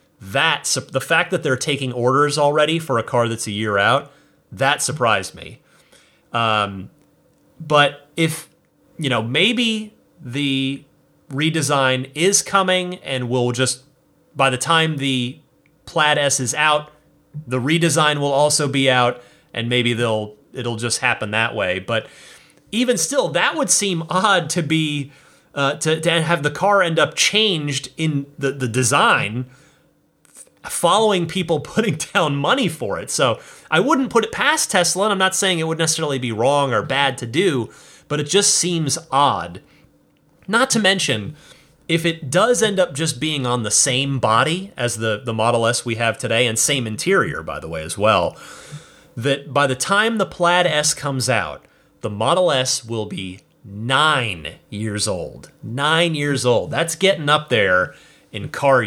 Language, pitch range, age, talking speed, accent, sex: English, 125-165 Hz, 30-49, 165 wpm, American, male